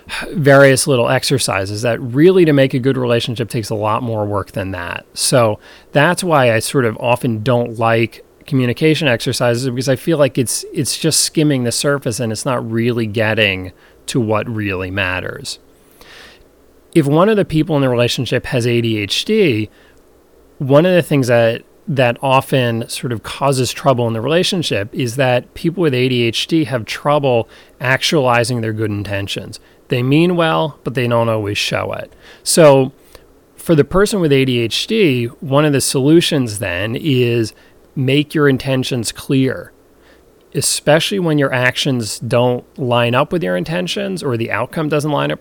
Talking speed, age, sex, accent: 165 wpm, 30-49, male, American